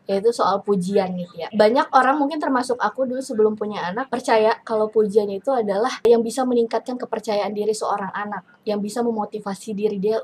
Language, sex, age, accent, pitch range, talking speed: Indonesian, female, 20-39, native, 210-250 Hz, 180 wpm